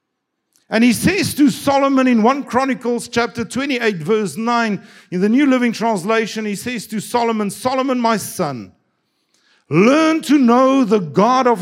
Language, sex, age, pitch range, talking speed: English, male, 50-69, 185-255 Hz, 155 wpm